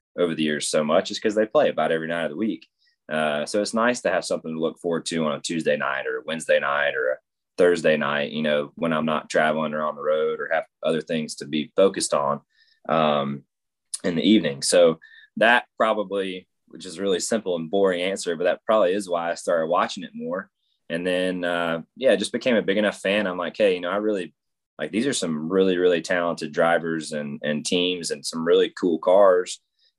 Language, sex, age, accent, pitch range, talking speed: English, male, 20-39, American, 80-105 Hz, 230 wpm